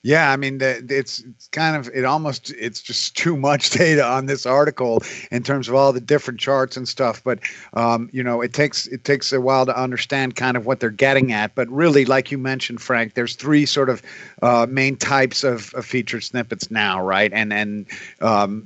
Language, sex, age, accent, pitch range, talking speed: English, male, 50-69, American, 115-135 Hz, 210 wpm